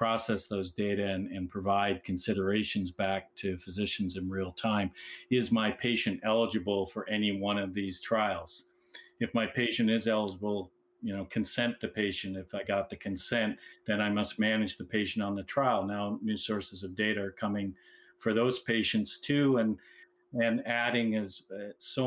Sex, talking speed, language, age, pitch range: male, 175 wpm, English, 50-69, 100-115 Hz